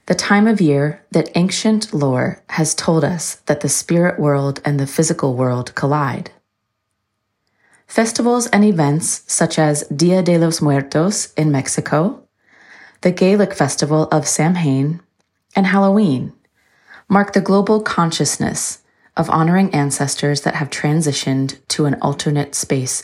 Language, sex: English, female